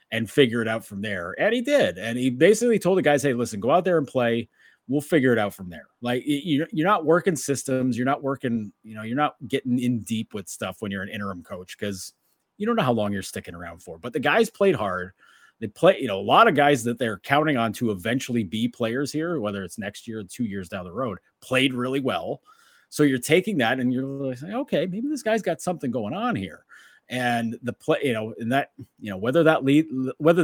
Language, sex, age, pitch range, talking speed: English, male, 30-49, 110-150 Hz, 245 wpm